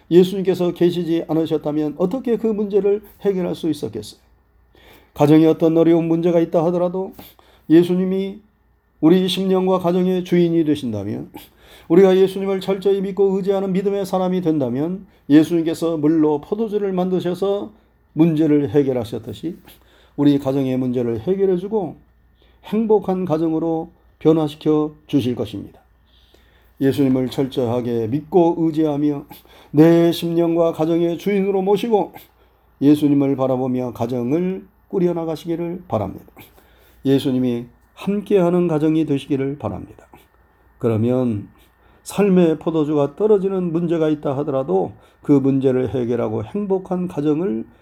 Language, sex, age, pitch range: Korean, male, 40-59, 135-185 Hz